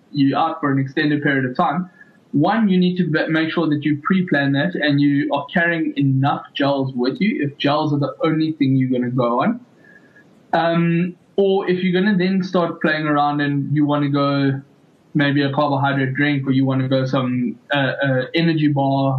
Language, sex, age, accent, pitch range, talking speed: English, male, 20-39, South African, 140-165 Hz, 205 wpm